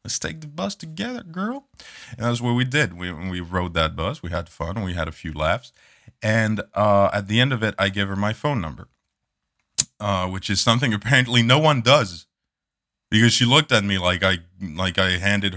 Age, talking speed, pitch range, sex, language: 20-39, 215 wpm, 90-120 Hz, male, English